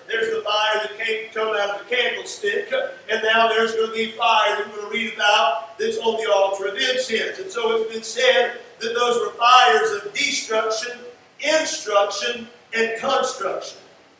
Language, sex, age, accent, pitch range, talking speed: English, male, 50-69, American, 220-270 Hz, 180 wpm